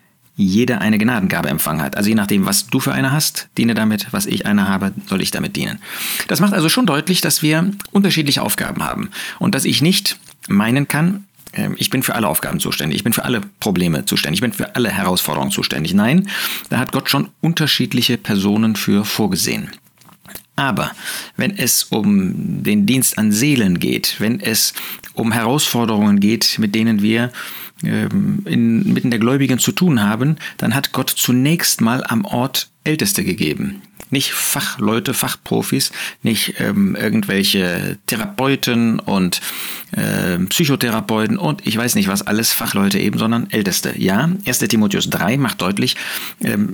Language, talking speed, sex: German, 160 wpm, male